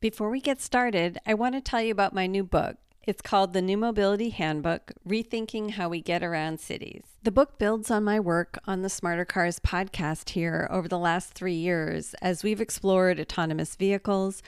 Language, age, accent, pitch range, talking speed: English, 40-59, American, 175-215 Hz, 190 wpm